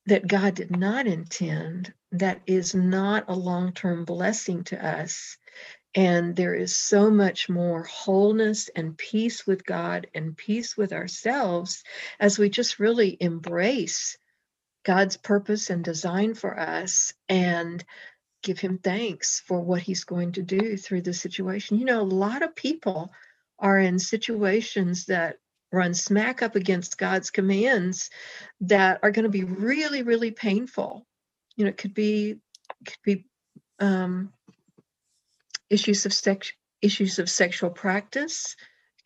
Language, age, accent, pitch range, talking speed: English, 60-79, American, 175-210 Hz, 140 wpm